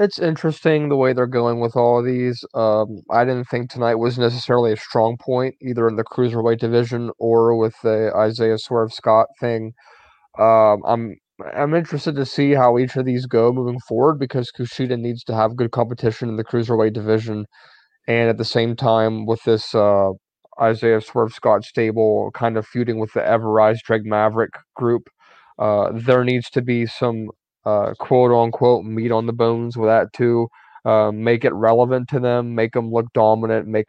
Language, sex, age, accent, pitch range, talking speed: English, male, 20-39, American, 110-125 Hz, 180 wpm